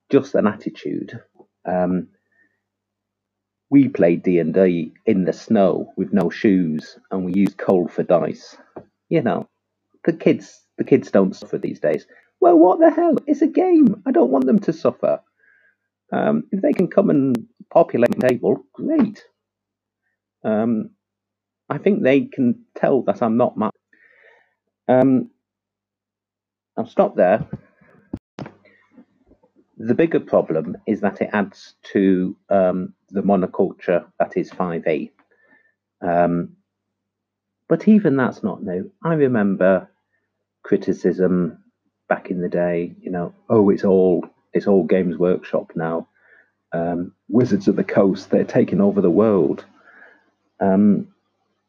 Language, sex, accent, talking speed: English, male, British, 130 wpm